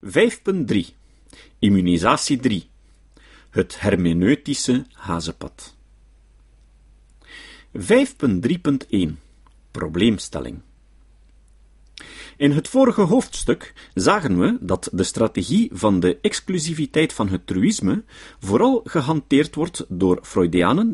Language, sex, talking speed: Dutch, male, 80 wpm